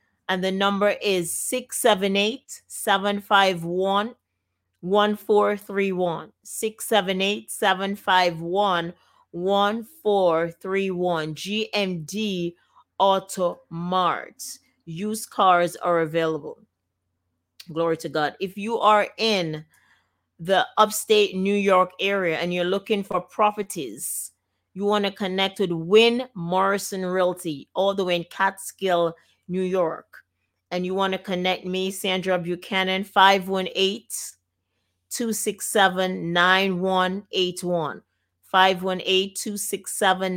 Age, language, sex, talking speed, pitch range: 30-49, English, female, 85 wpm, 175-200 Hz